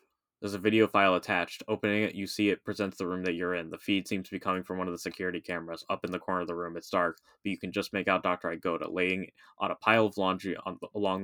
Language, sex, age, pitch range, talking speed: English, male, 20-39, 90-105 Hz, 280 wpm